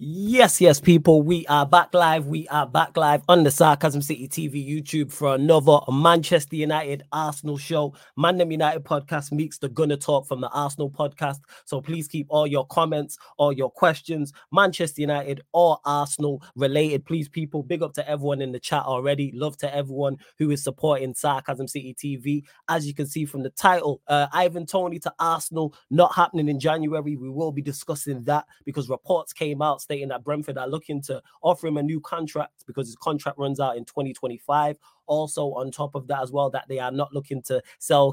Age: 20-39